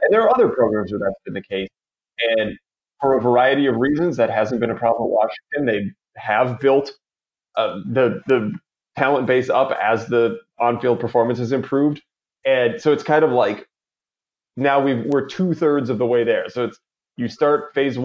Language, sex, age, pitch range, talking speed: English, male, 30-49, 115-140 Hz, 190 wpm